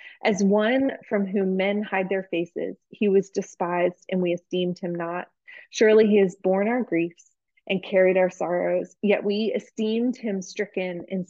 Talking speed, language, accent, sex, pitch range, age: 170 wpm, English, American, female, 180-205 Hz, 20-39